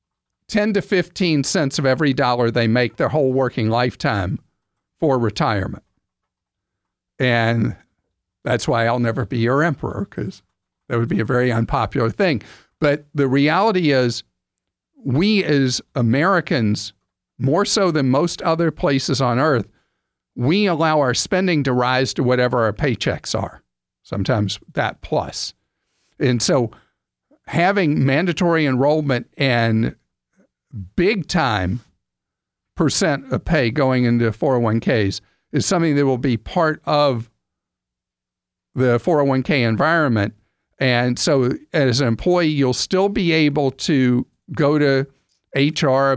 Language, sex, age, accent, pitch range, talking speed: English, male, 50-69, American, 115-150 Hz, 125 wpm